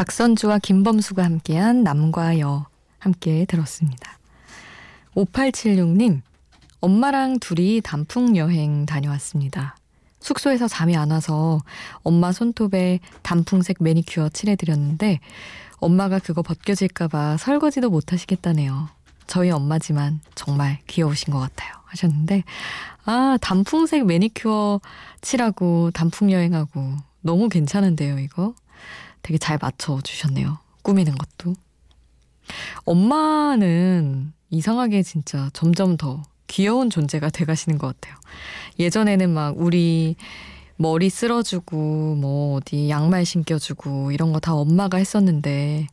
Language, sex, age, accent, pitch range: Korean, female, 20-39, native, 150-200 Hz